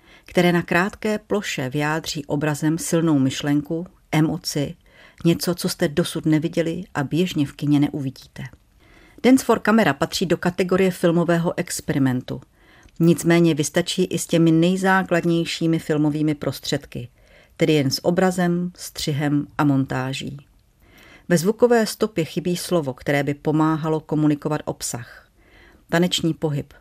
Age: 50-69